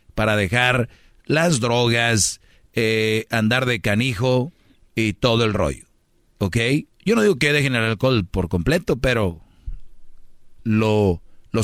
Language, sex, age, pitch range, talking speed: Spanish, male, 40-59, 110-135 Hz, 130 wpm